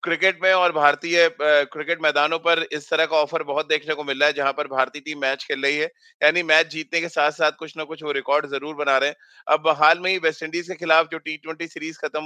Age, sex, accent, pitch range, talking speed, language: 30-49, male, native, 145-165 Hz, 95 wpm, Hindi